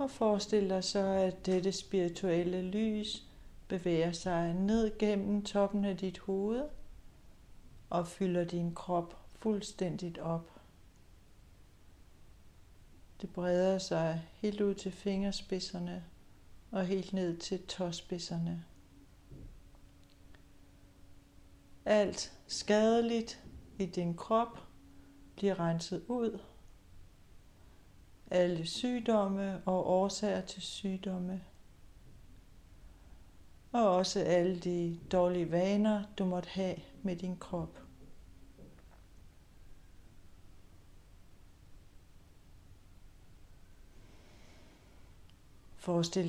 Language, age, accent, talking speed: Danish, 60-79, native, 80 wpm